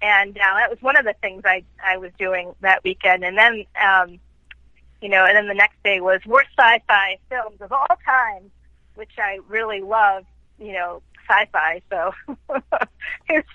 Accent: American